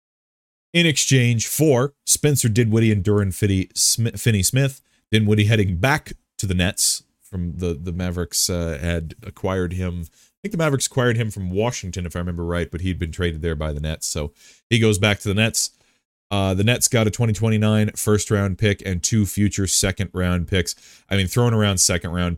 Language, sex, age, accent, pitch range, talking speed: English, male, 30-49, American, 80-105 Hz, 185 wpm